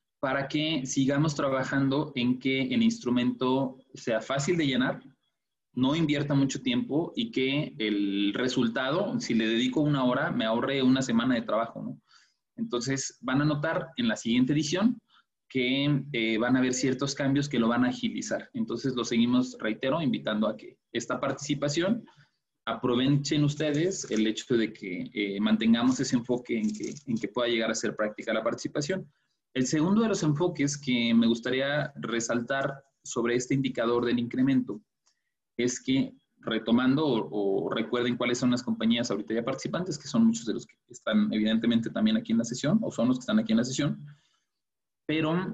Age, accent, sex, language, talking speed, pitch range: 20-39, Mexican, male, Spanish, 175 wpm, 120-155 Hz